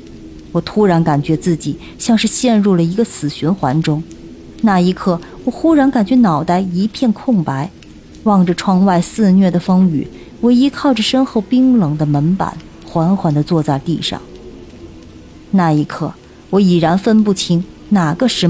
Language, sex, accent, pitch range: Chinese, female, native, 160-235 Hz